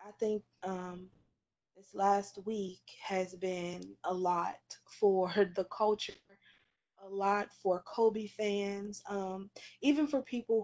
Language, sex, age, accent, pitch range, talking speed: English, female, 20-39, American, 185-215 Hz, 125 wpm